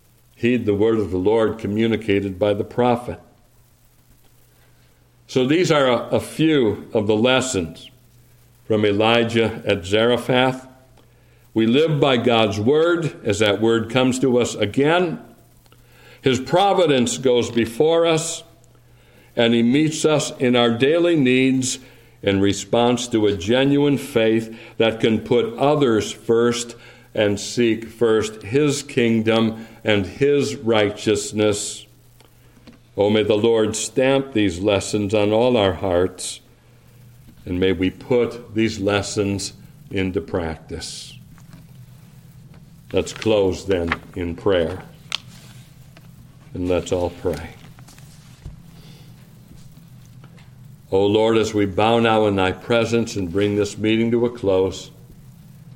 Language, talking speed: English, 120 wpm